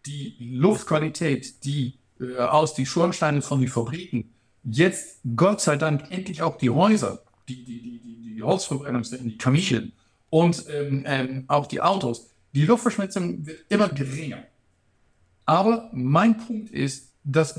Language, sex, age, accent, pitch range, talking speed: German, male, 60-79, German, 125-175 Hz, 140 wpm